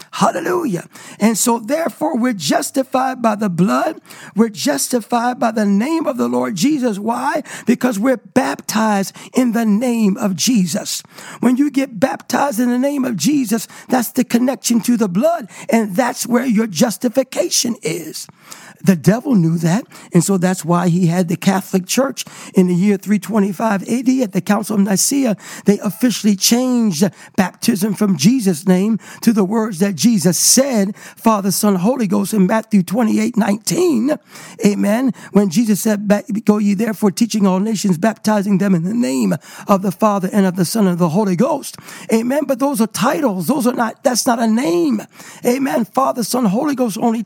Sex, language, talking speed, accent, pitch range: male, English, 175 wpm, American, 200-255 Hz